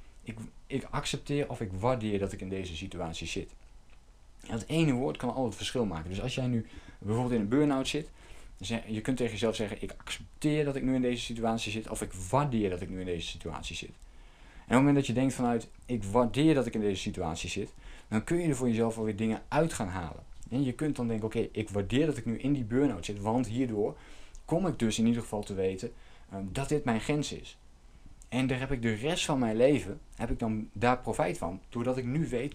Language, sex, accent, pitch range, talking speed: Dutch, male, Dutch, 95-130 Hz, 245 wpm